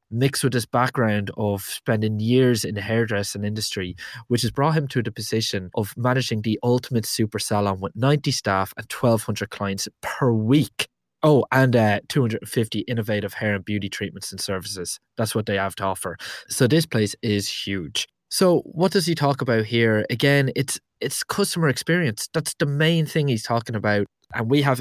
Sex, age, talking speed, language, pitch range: male, 20-39, 185 wpm, English, 105-130 Hz